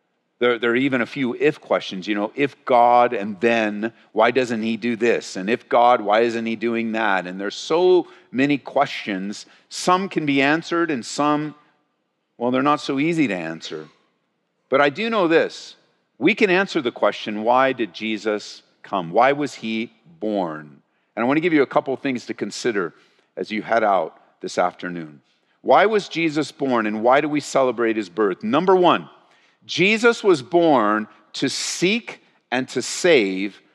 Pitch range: 115-185 Hz